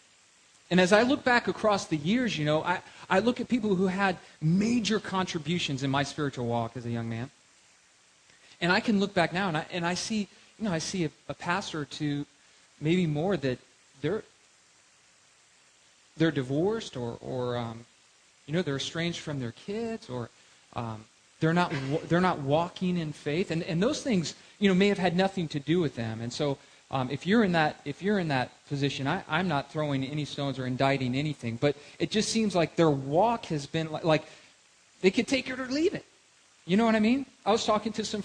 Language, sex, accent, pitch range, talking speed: English, male, American, 145-205 Hz, 210 wpm